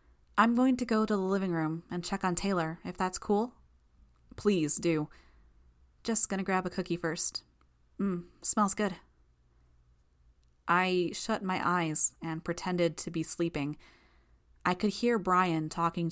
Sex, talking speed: female, 150 wpm